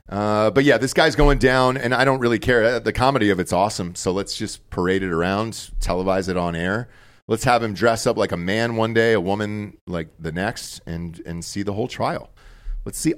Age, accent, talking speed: 40-59, American, 230 wpm